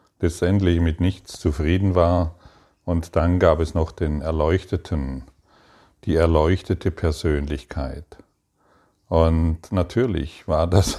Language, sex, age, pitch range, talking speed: German, male, 40-59, 80-90 Hz, 110 wpm